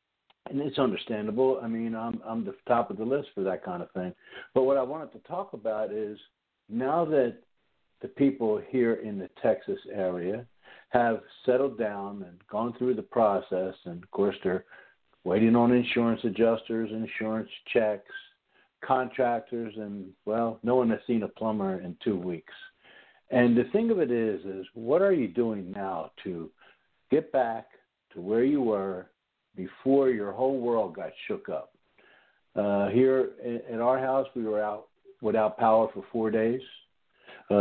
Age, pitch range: 60-79, 105-130 Hz